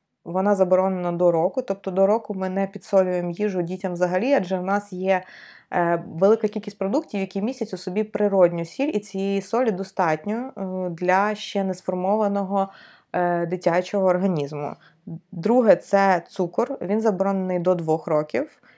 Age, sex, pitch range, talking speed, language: 20-39, female, 180-210 Hz, 140 wpm, Ukrainian